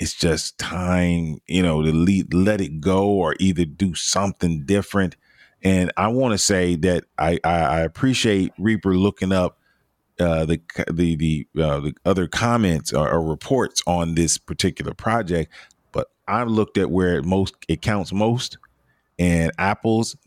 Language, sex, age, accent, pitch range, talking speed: English, male, 40-59, American, 85-105 Hz, 165 wpm